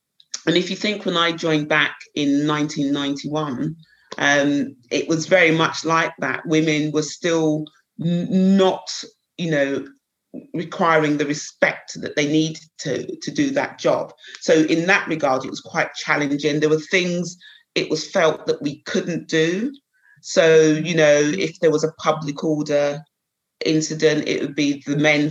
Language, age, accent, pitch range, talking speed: English, 30-49, British, 145-170 Hz, 160 wpm